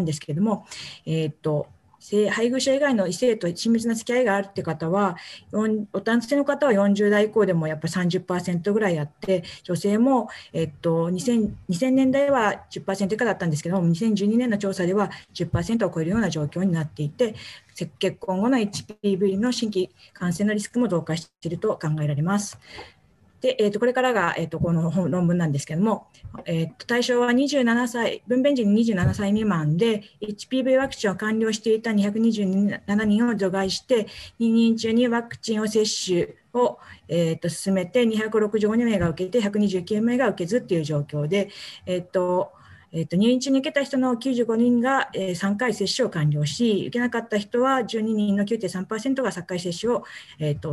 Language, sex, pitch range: Japanese, female, 175-230 Hz